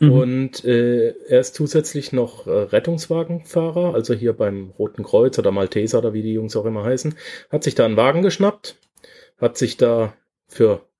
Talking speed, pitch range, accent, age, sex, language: 175 wpm, 115-140 Hz, German, 30-49, male, German